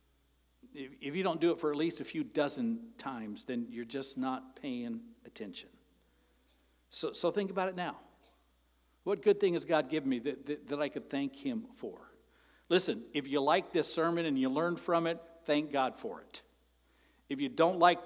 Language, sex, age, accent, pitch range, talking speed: English, male, 60-79, American, 150-230 Hz, 195 wpm